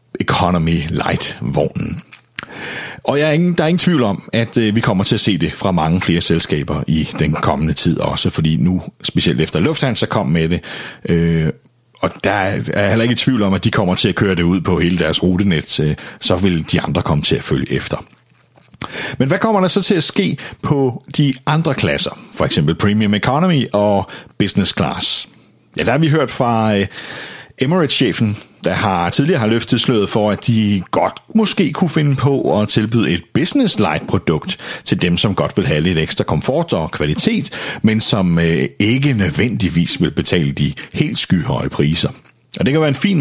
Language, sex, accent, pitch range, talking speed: Danish, male, native, 90-135 Hz, 195 wpm